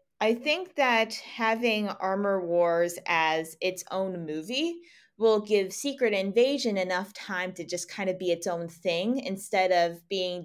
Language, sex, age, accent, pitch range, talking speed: English, female, 20-39, American, 170-215 Hz, 155 wpm